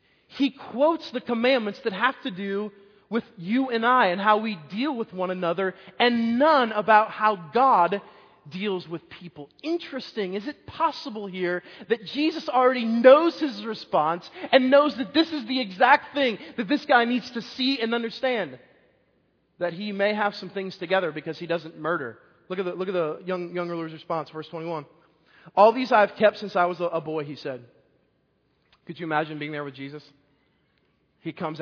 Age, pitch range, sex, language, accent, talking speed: 20-39, 170-235 Hz, male, English, American, 185 wpm